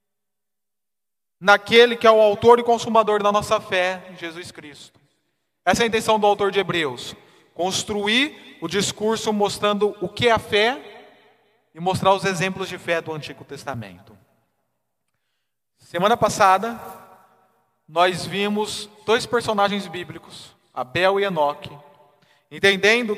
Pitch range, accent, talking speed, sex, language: 170-205 Hz, Brazilian, 125 wpm, male, Portuguese